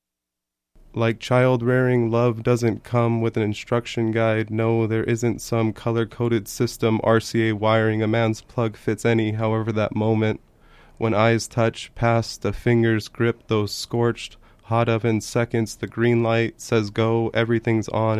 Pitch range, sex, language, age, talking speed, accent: 110-115 Hz, male, English, 20-39, 145 wpm, American